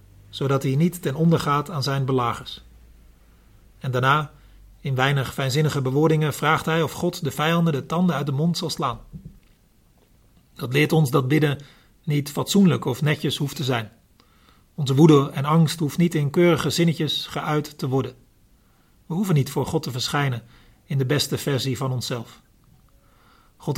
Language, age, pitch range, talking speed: Dutch, 40-59, 125-155 Hz, 165 wpm